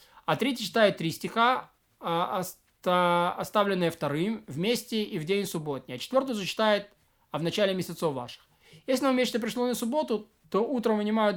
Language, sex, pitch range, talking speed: Russian, male, 175-230 Hz, 155 wpm